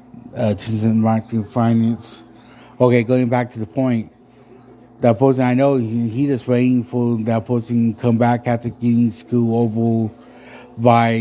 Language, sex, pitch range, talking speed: English, male, 110-120 Hz, 145 wpm